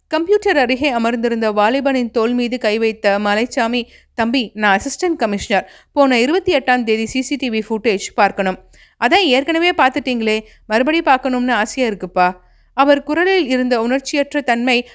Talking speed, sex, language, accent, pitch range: 120 wpm, female, Tamil, native, 220-280 Hz